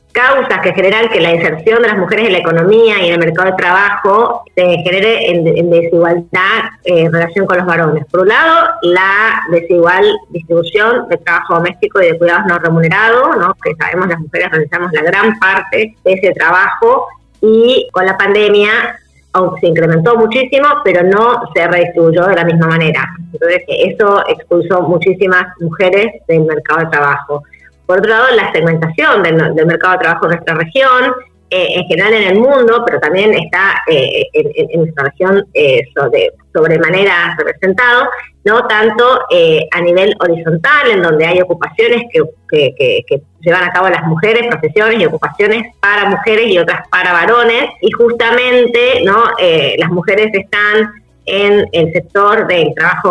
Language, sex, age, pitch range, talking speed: Spanish, female, 20-39, 170-240 Hz, 170 wpm